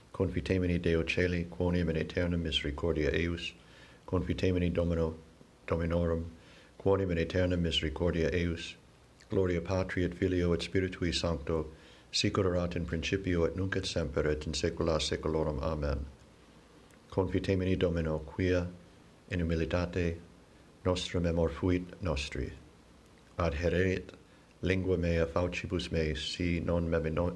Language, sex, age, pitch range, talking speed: English, male, 60-79, 85-95 Hz, 110 wpm